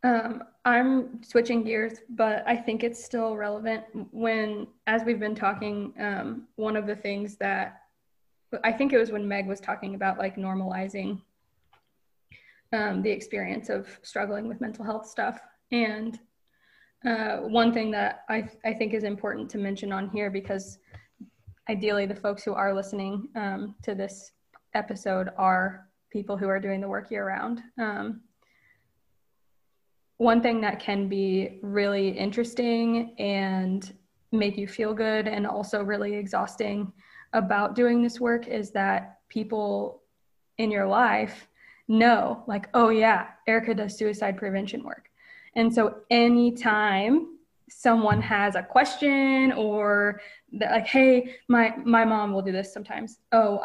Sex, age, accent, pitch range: female, 20-39, American, 200-230 Hz